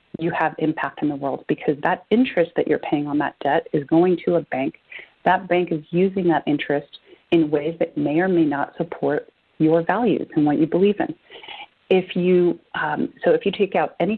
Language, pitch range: English, 160-185 Hz